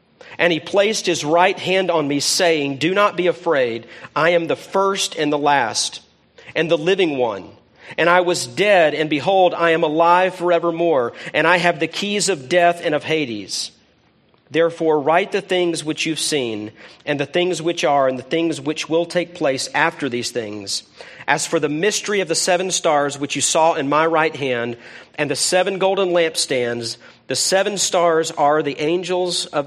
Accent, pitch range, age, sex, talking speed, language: American, 145-180 Hz, 40-59, male, 190 wpm, English